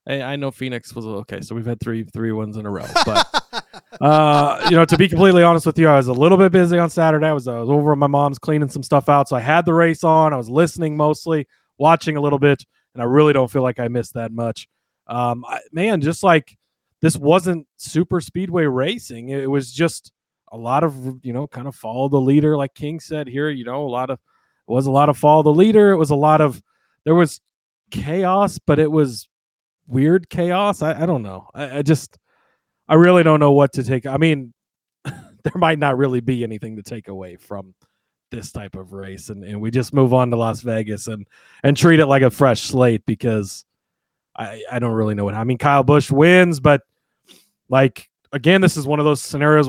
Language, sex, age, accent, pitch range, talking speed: English, male, 30-49, American, 125-160 Hz, 225 wpm